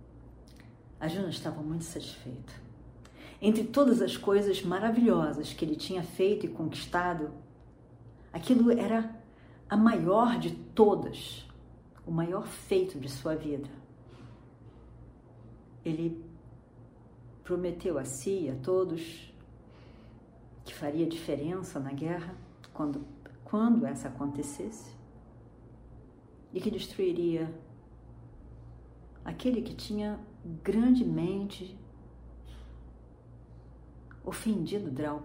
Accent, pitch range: Brazilian, 120-195 Hz